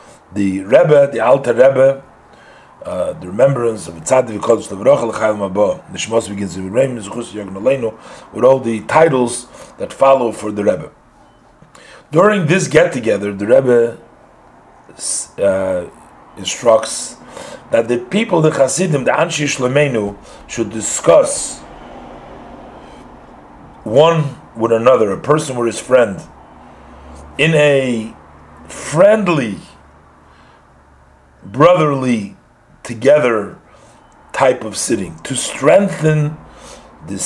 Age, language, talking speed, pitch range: 40-59, English, 95 wpm, 105-150 Hz